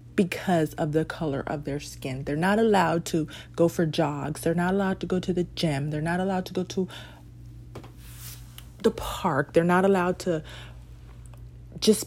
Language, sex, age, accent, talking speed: English, female, 30-49, American, 175 wpm